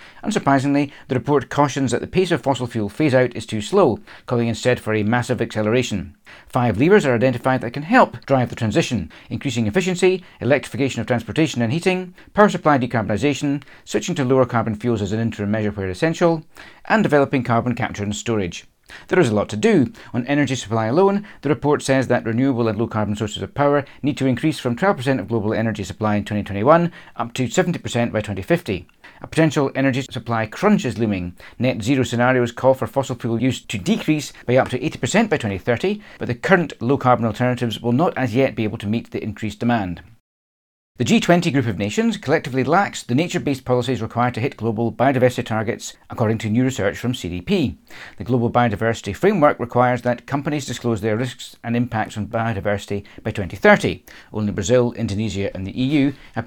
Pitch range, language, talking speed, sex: 110-140 Hz, English, 190 wpm, male